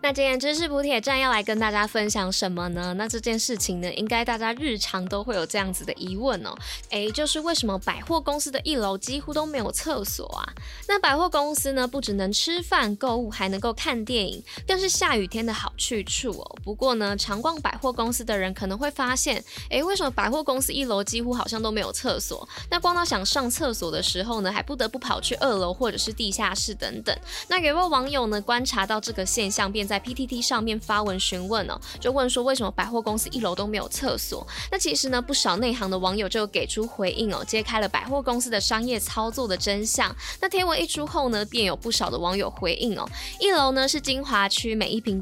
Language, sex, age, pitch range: Chinese, female, 20-39, 205-275 Hz